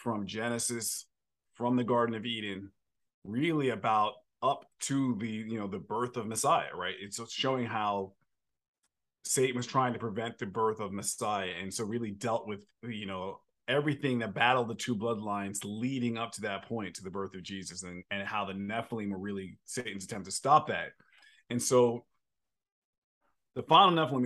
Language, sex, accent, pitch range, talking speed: English, male, American, 110-135 Hz, 175 wpm